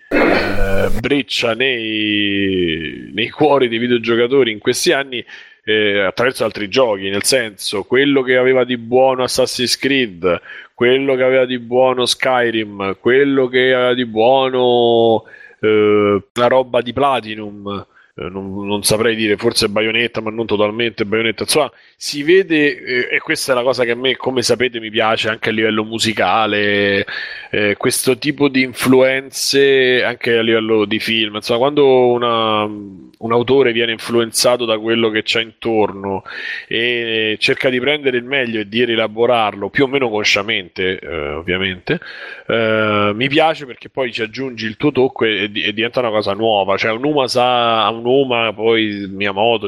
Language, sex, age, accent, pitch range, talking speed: Italian, male, 30-49, native, 105-130 Hz, 155 wpm